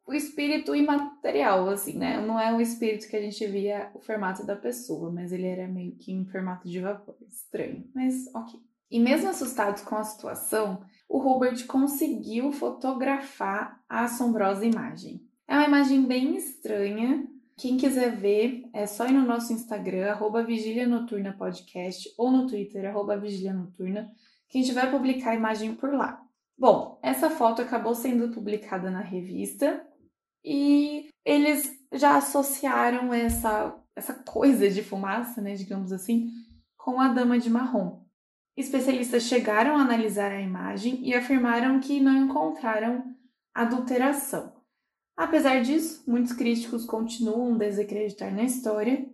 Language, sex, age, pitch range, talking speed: Portuguese, female, 20-39, 205-260 Hz, 145 wpm